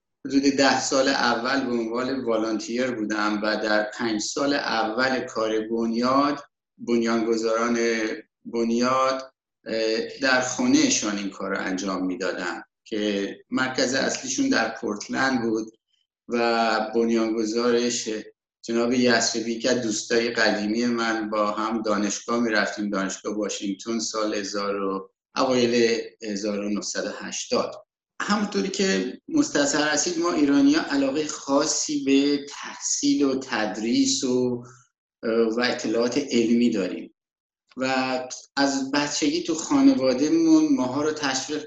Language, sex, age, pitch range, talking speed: Persian, male, 50-69, 115-150 Hz, 100 wpm